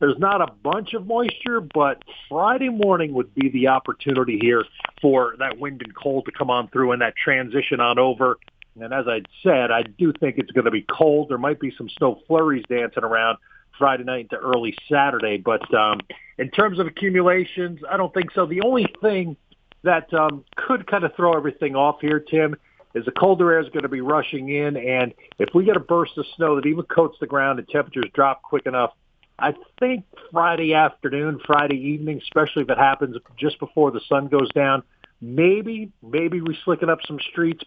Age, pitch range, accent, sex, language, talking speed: 50-69, 130-170 Hz, American, male, English, 205 wpm